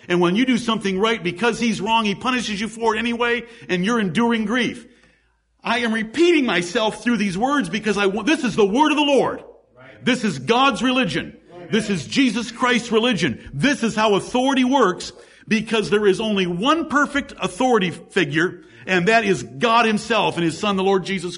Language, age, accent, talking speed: English, 50-69, American, 195 wpm